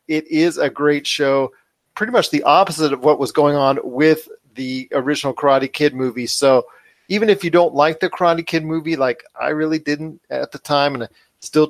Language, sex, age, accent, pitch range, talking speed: English, male, 40-59, American, 140-165 Hz, 205 wpm